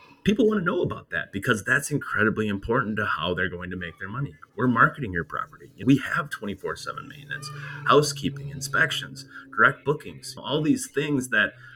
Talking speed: 175 wpm